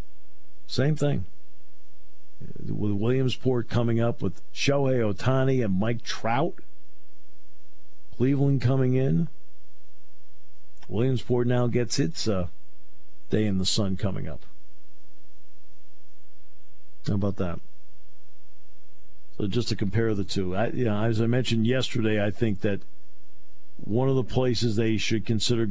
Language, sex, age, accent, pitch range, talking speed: English, male, 50-69, American, 75-115 Hz, 115 wpm